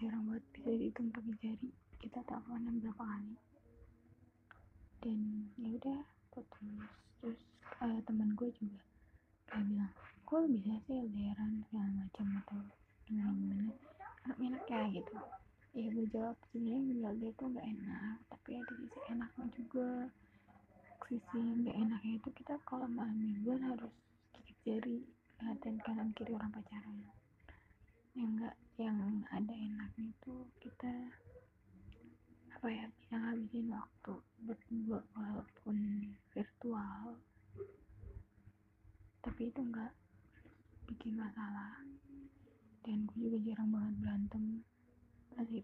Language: Indonesian